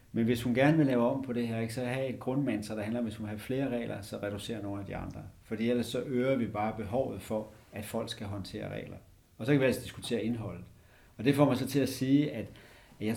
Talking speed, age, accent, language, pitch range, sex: 265 wpm, 60-79, native, Danish, 110-135 Hz, male